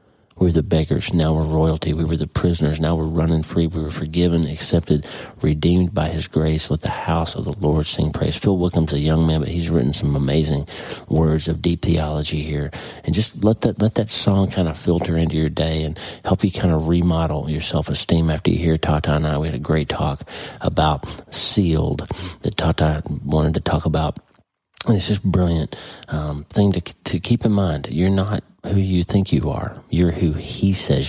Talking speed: 210 wpm